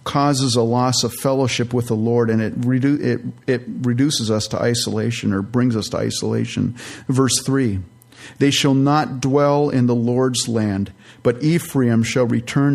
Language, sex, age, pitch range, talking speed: English, male, 50-69, 120-145 Hz, 170 wpm